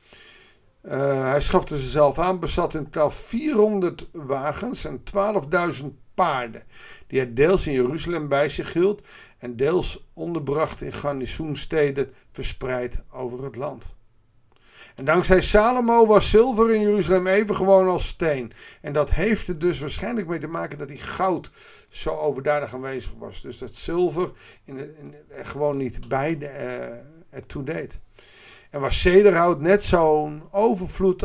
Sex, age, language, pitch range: male, 50-69, Dutch, 130-180 Hz